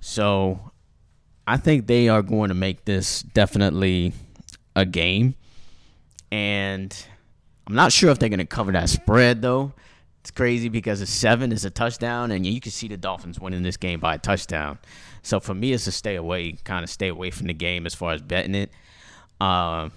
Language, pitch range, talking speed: English, 85-110 Hz, 190 wpm